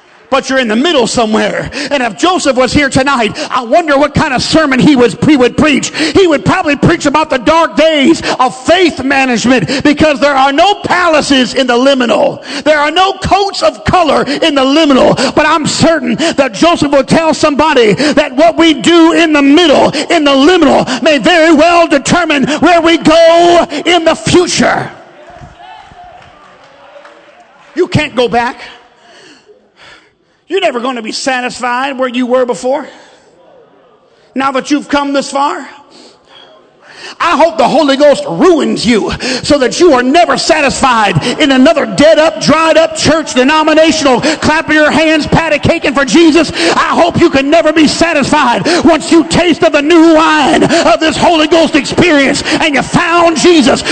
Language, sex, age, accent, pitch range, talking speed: English, male, 50-69, American, 270-325 Hz, 165 wpm